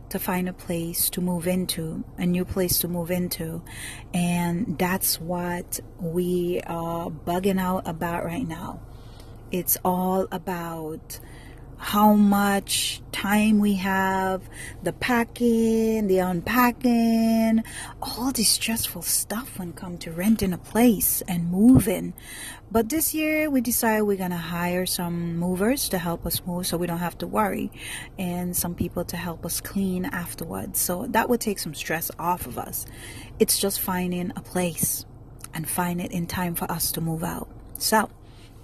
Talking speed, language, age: 160 wpm, English, 30-49